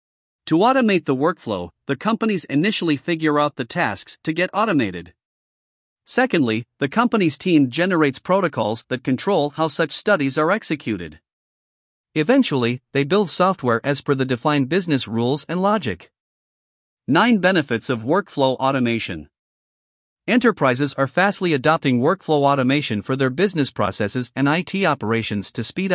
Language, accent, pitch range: English, American, 125-175 Hz